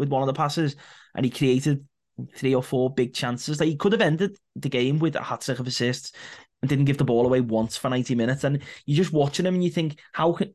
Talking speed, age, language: 250 wpm, 20-39, English